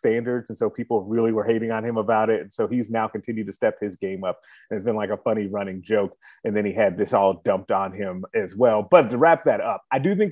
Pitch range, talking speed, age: 105-125 Hz, 280 wpm, 30-49